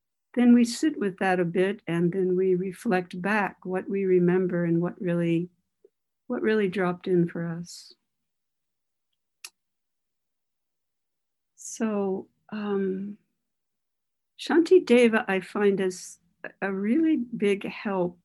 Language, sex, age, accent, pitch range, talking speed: English, female, 60-79, American, 180-215 Hz, 115 wpm